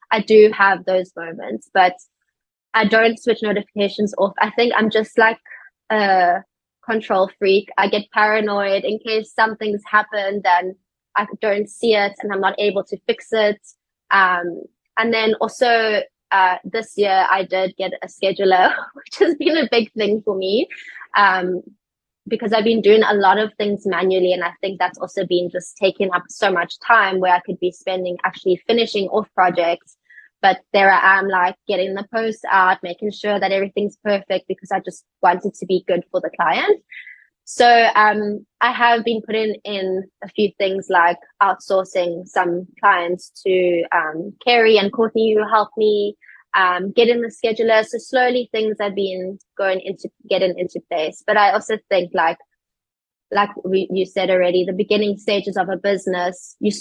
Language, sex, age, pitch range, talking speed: English, female, 20-39, 185-215 Hz, 175 wpm